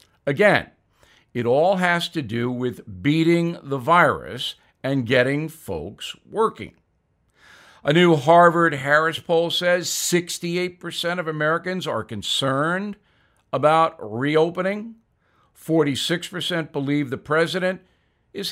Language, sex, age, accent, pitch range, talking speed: English, male, 60-79, American, 130-170 Hz, 100 wpm